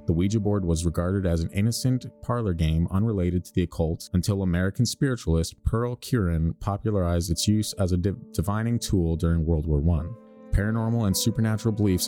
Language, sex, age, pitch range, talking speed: English, male, 30-49, 85-110 Hz, 170 wpm